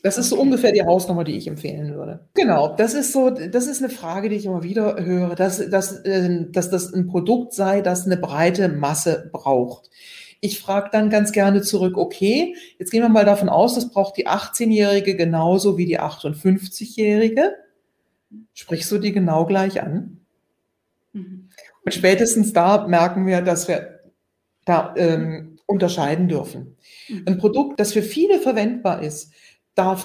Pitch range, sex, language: 175-215 Hz, female, German